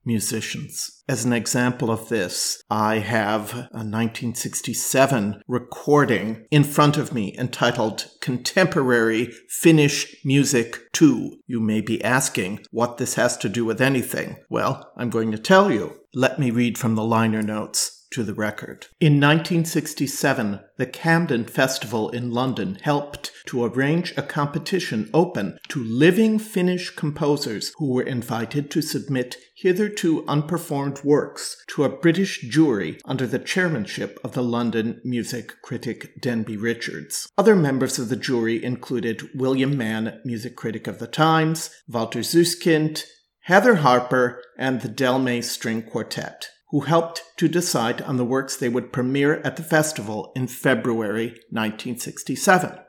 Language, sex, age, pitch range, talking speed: English, male, 50-69, 115-155 Hz, 140 wpm